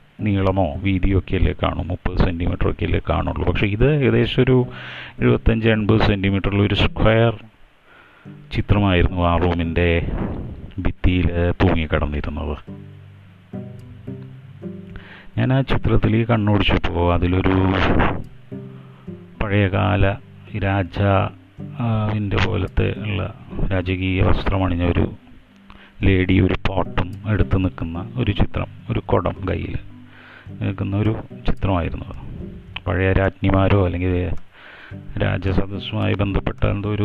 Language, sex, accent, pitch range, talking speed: Malayalam, male, native, 90-110 Hz, 80 wpm